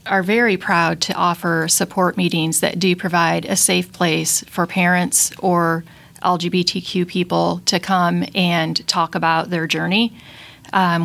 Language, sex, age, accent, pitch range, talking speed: English, female, 30-49, American, 170-195 Hz, 140 wpm